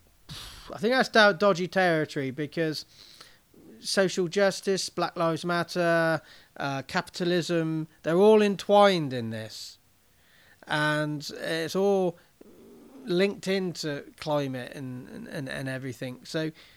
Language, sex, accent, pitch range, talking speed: English, male, British, 140-180 Hz, 105 wpm